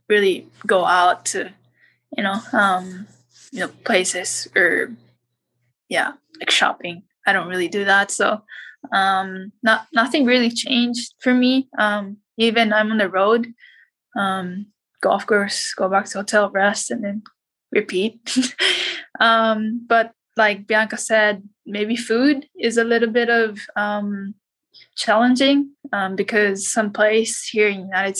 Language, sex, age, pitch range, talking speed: English, female, 10-29, 200-235 Hz, 140 wpm